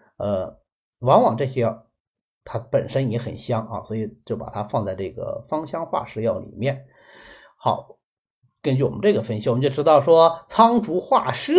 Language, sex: Chinese, male